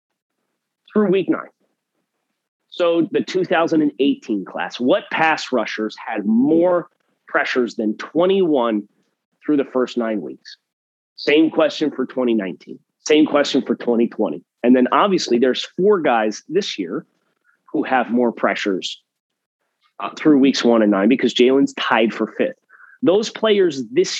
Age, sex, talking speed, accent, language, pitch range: 30-49, male, 135 wpm, American, English, 120-185 Hz